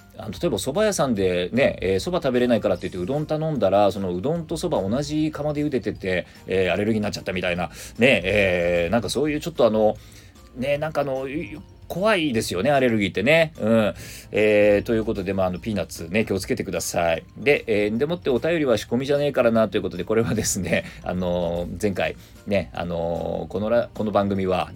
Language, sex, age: Japanese, male, 40-59